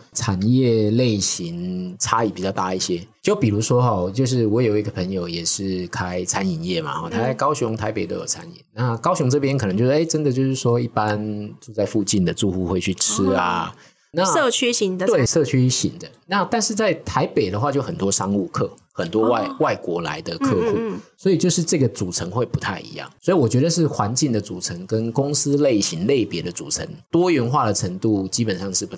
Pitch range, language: 105-150 Hz, Chinese